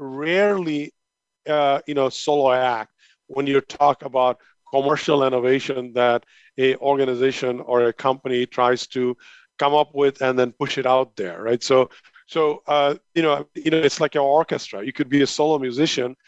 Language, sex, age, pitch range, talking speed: English, male, 40-59, 130-145 Hz, 175 wpm